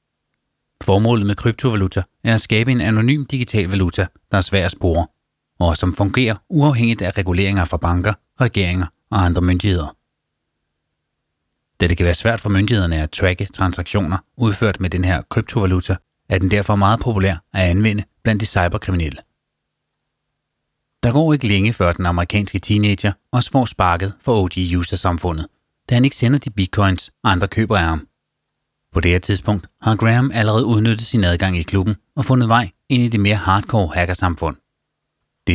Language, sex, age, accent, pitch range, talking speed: Danish, male, 30-49, native, 90-115 Hz, 165 wpm